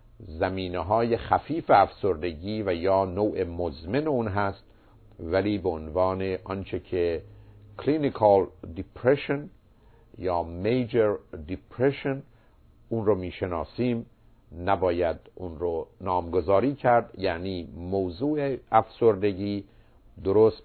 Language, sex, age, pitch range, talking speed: Persian, male, 50-69, 90-115 Hz, 95 wpm